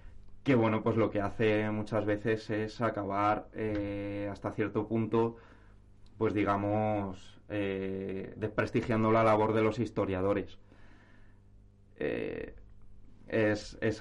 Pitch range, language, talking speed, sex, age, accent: 100-110 Hz, Spanish, 110 wpm, male, 20-39, Spanish